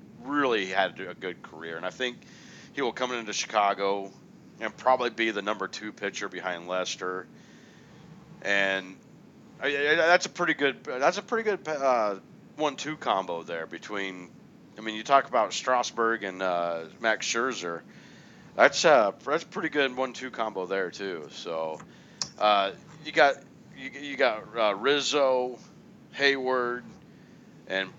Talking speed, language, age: 150 wpm, English, 40-59